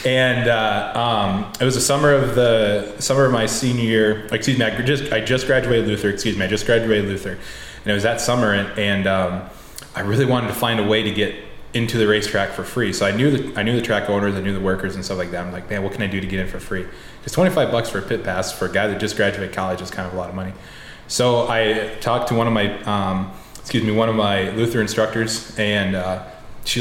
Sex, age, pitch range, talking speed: male, 20-39, 95-115 Hz, 265 wpm